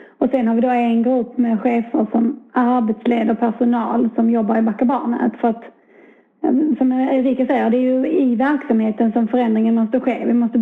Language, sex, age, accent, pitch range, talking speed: Swedish, female, 30-49, native, 230-260 Hz, 180 wpm